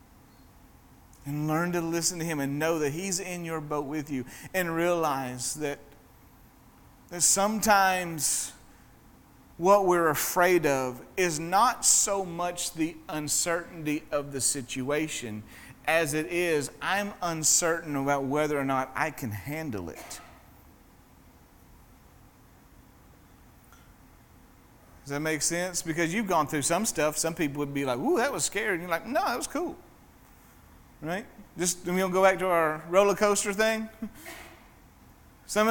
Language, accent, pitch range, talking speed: English, American, 140-185 Hz, 140 wpm